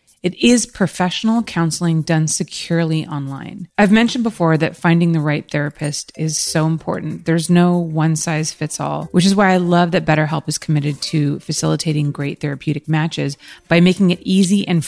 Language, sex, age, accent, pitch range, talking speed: English, female, 30-49, American, 155-190 Hz, 175 wpm